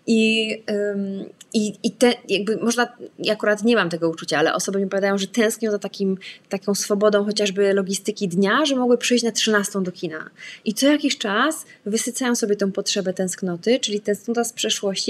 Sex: female